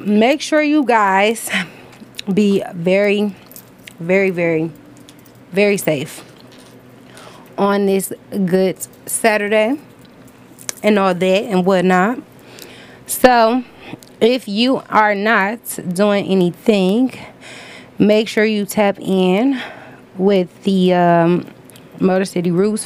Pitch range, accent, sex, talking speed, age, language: 175-210 Hz, American, female, 95 wpm, 20-39, English